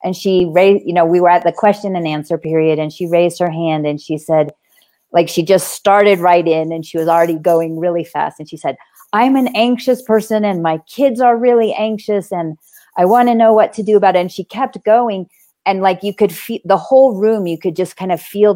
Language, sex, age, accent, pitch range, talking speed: English, female, 40-59, American, 170-215 Hz, 245 wpm